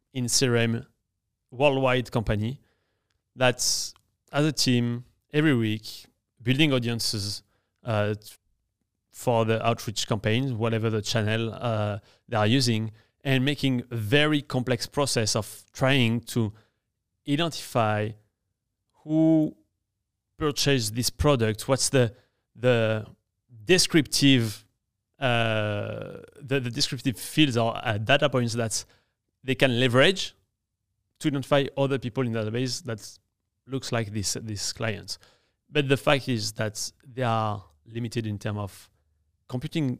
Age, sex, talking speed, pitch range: 30-49, male, 120 wpm, 105-135 Hz